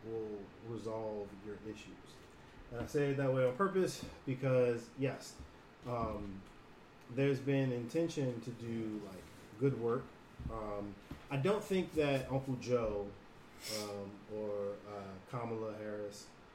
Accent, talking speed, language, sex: American, 125 wpm, English, male